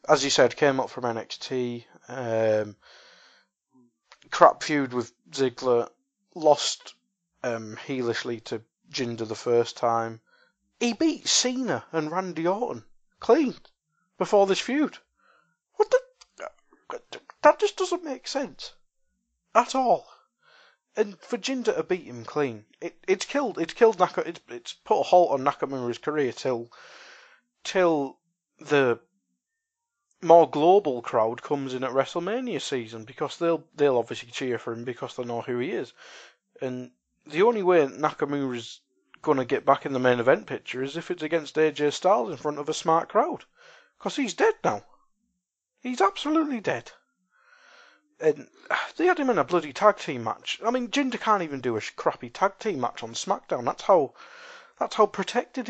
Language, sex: English, male